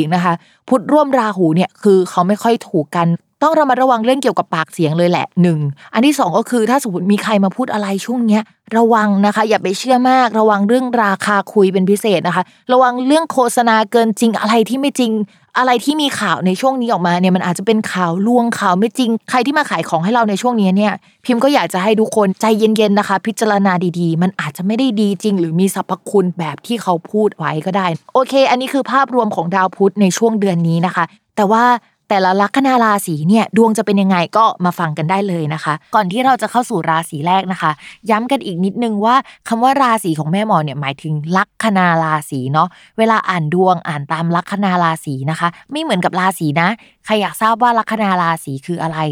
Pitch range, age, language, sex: 175-230 Hz, 20-39, Thai, female